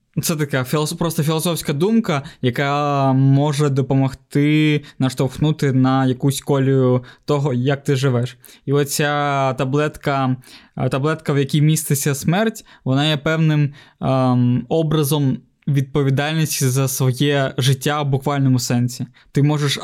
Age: 20-39